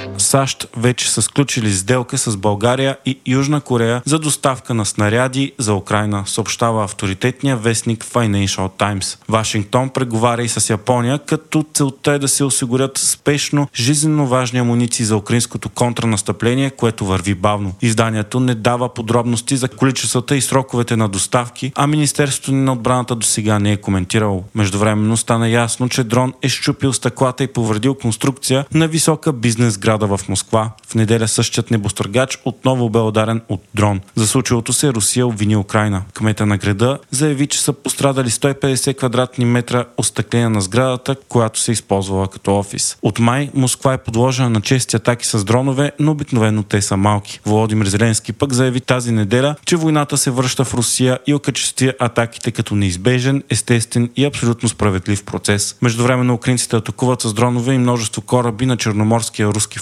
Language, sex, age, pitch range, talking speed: Bulgarian, male, 30-49, 110-130 Hz, 160 wpm